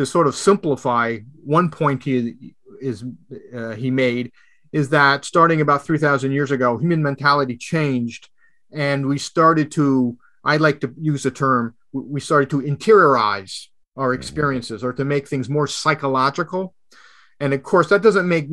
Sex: male